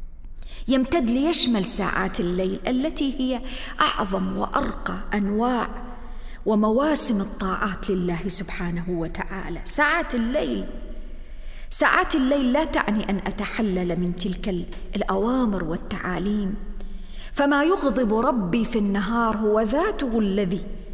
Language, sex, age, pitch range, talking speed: English, female, 40-59, 190-245 Hz, 95 wpm